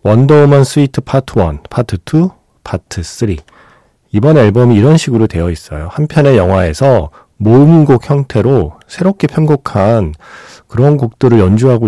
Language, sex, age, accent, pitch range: Korean, male, 40-59, native, 95-140 Hz